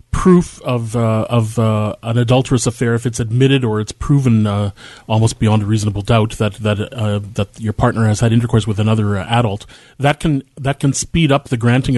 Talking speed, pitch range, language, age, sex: 215 wpm, 110-120 Hz, English, 30-49, male